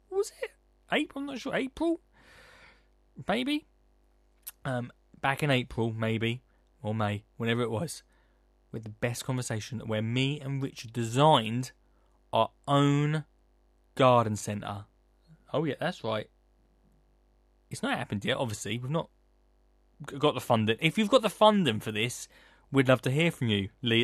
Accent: British